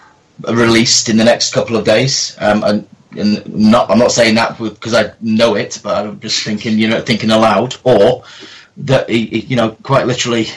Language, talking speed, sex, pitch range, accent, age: English, 200 wpm, male, 110-120 Hz, British, 30-49